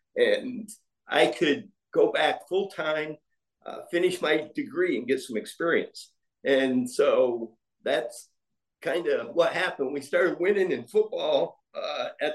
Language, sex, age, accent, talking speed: English, male, 50-69, American, 140 wpm